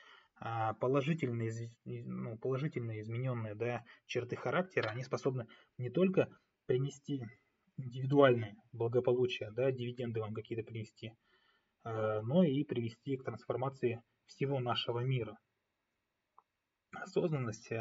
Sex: male